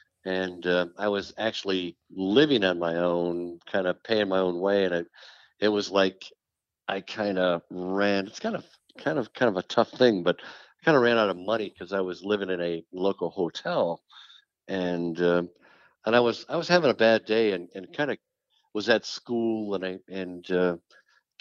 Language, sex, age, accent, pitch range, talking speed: English, male, 60-79, American, 90-110 Hz, 200 wpm